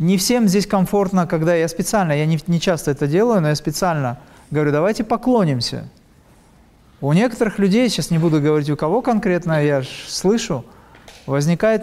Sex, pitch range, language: male, 145-190 Hz, Russian